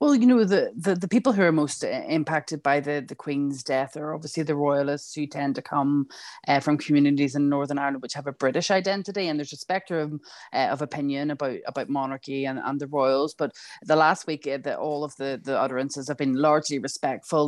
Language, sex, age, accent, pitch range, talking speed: English, female, 30-49, Irish, 140-155 Hz, 215 wpm